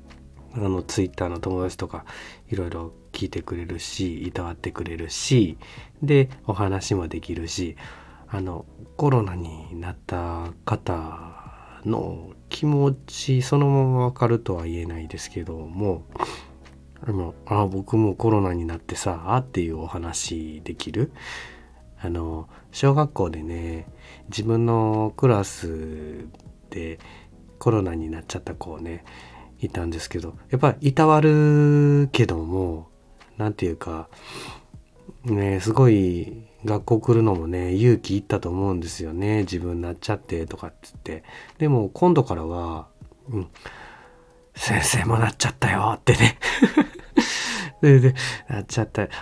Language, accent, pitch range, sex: Japanese, native, 85-115 Hz, male